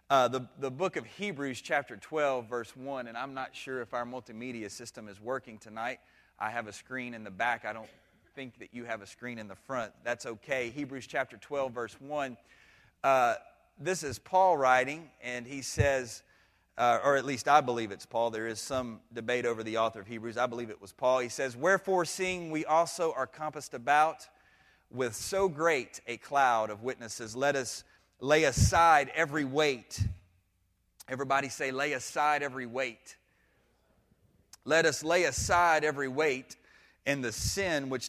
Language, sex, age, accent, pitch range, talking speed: English, male, 30-49, American, 115-150 Hz, 180 wpm